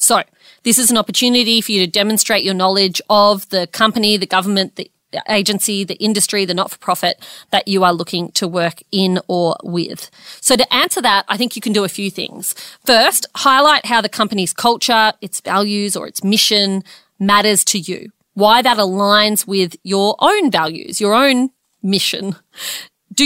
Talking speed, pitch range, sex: 175 wpm, 185-215 Hz, female